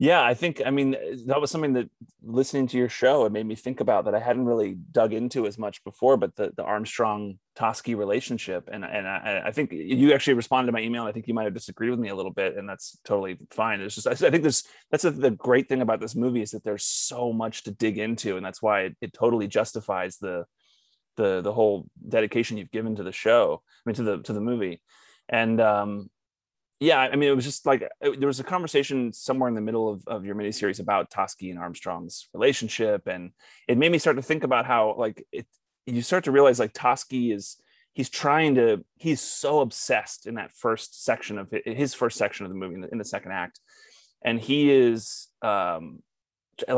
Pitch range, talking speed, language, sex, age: 105-130 Hz, 225 wpm, English, male, 30-49